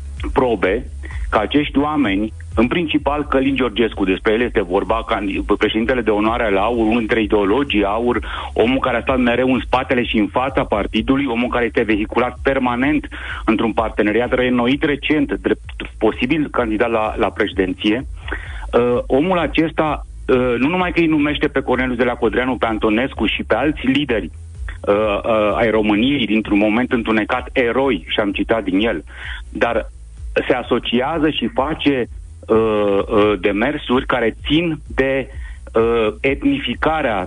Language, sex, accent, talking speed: Romanian, male, native, 145 wpm